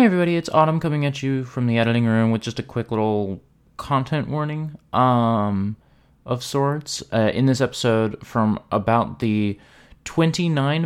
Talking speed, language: 160 wpm, English